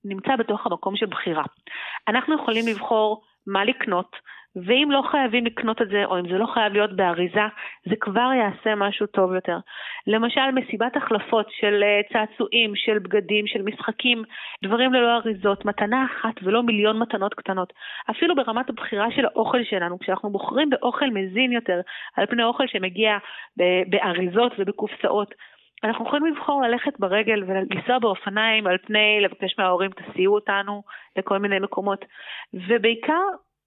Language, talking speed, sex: Hebrew, 145 wpm, female